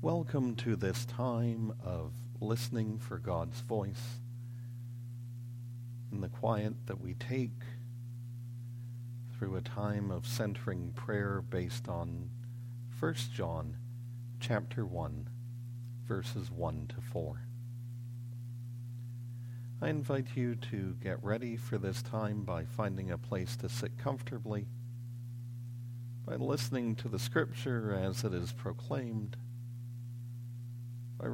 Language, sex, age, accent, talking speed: English, male, 50-69, American, 110 wpm